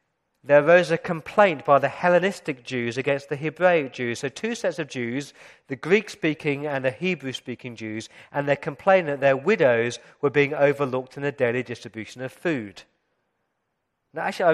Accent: British